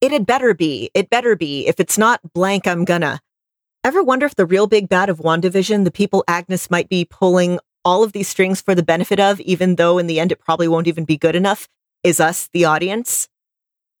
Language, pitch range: English, 170-205 Hz